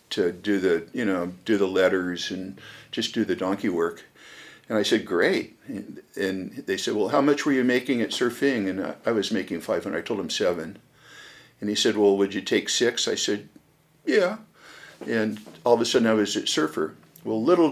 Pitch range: 100-120 Hz